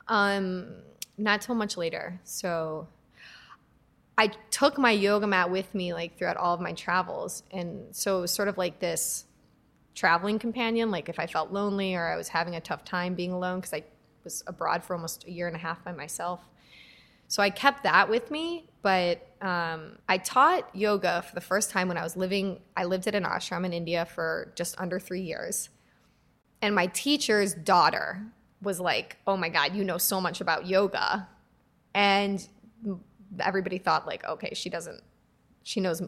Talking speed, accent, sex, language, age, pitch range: 185 wpm, American, female, English, 20-39, 175-210 Hz